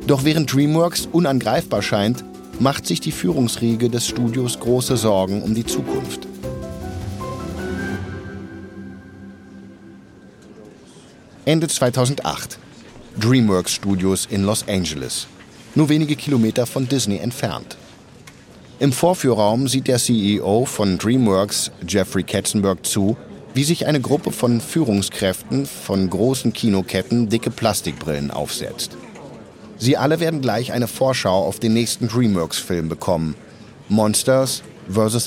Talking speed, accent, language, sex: 110 wpm, German, German, male